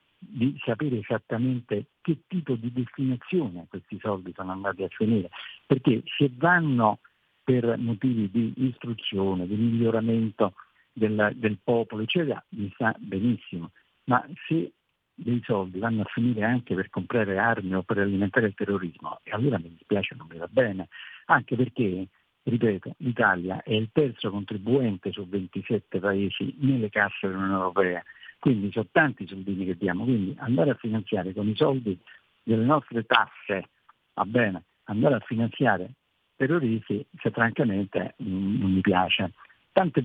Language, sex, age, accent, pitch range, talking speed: Italian, male, 50-69, native, 100-130 Hz, 145 wpm